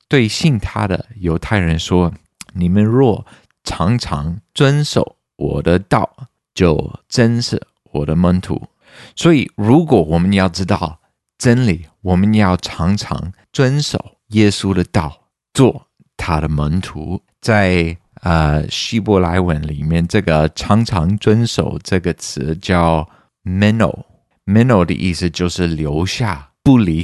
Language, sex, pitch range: Chinese, male, 85-105 Hz